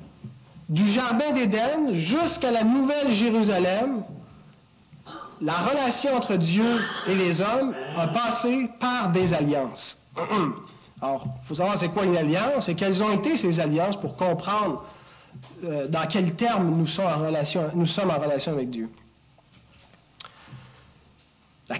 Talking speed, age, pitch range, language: 135 wpm, 40-59, 170-240 Hz, French